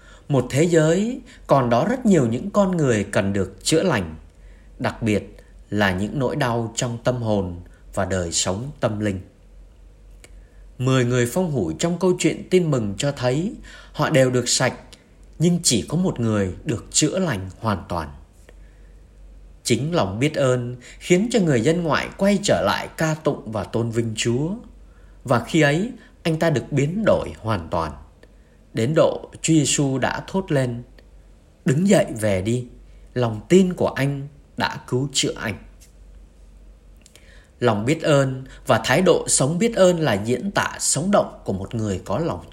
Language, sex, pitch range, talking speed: Vietnamese, male, 95-155 Hz, 170 wpm